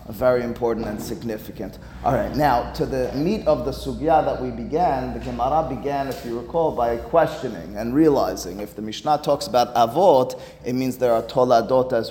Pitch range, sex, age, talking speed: 120-155 Hz, male, 30-49, 190 wpm